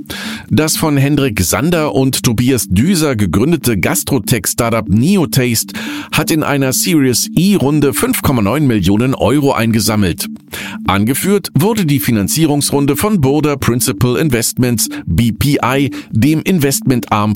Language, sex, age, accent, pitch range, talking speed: German, male, 50-69, German, 110-160 Hz, 100 wpm